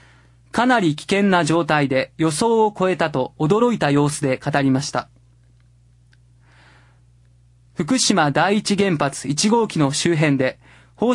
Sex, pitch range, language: male, 125-195 Hz, Japanese